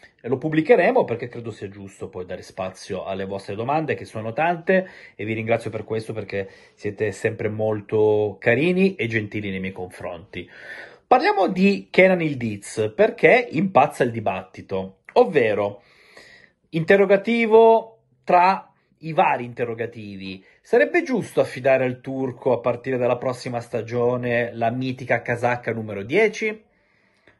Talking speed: 130 wpm